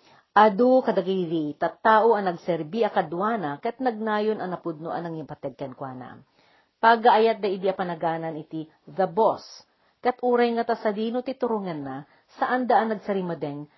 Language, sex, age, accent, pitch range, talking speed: Filipino, female, 50-69, native, 165-250 Hz, 145 wpm